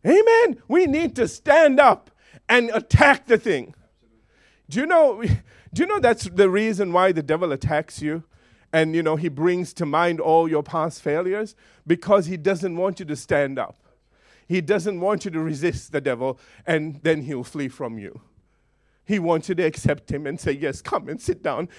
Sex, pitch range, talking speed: male, 165-265 Hz, 195 wpm